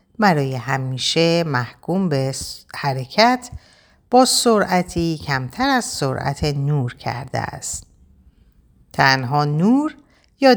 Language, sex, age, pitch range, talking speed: Persian, female, 50-69, 125-180 Hz, 90 wpm